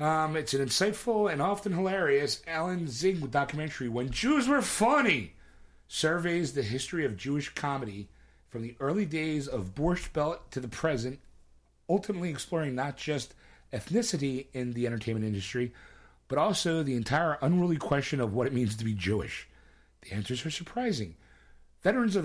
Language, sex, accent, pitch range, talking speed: English, male, American, 110-155 Hz, 155 wpm